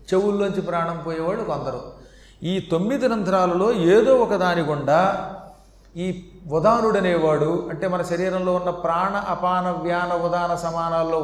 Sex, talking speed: male, 110 wpm